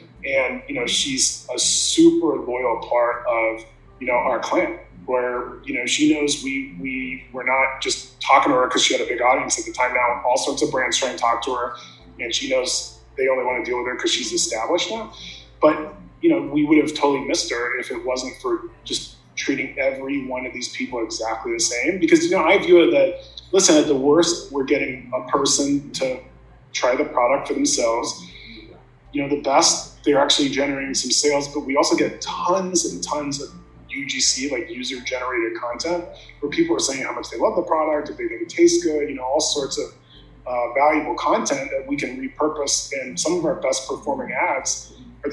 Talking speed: 210 wpm